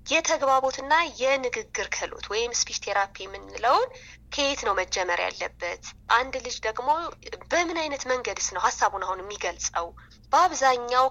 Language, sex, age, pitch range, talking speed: Amharic, female, 20-39, 205-285 Hz, 125 wpm